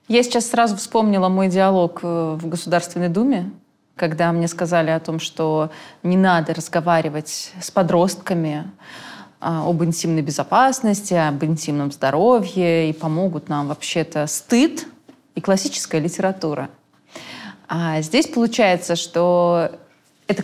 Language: Russian